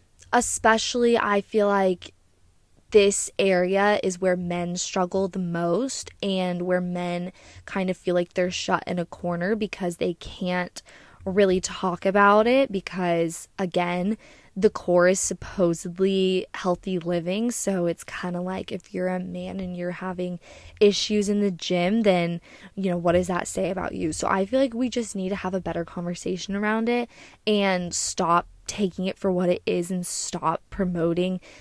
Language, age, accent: English, 10-29, American